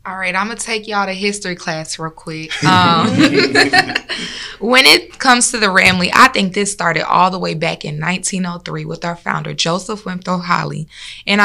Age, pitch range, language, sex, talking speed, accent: 20-39, 170-205 Hz, English, female, 195 wpm, American